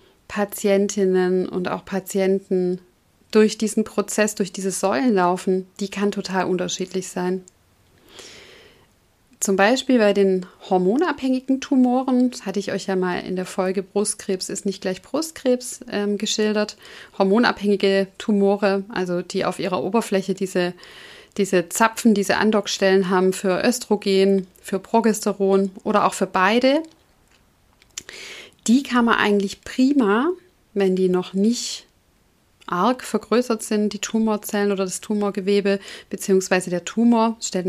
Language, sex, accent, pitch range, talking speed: German, female, German, 190-220 Hz, 125 wpm